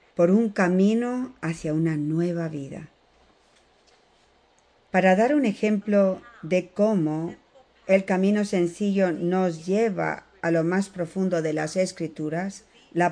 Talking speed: 120 wpm